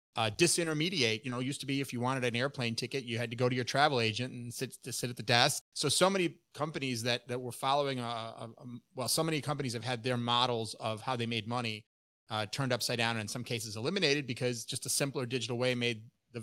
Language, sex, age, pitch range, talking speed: English, male, 30-49, 115-135 Hz, 255 wpm